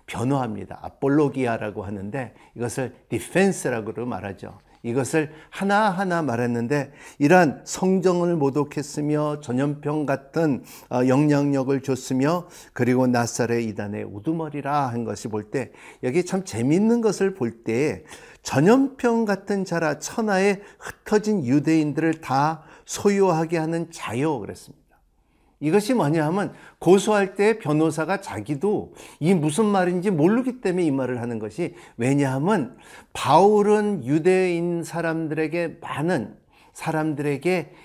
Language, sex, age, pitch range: Korean, male, 50-69, 130-180 Hz